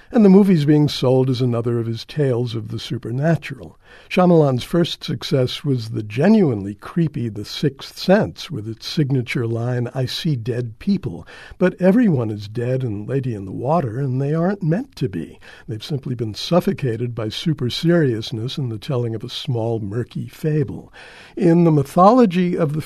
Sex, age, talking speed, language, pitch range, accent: male, 60-79, 175 wpm, English, 120-155 Hz, American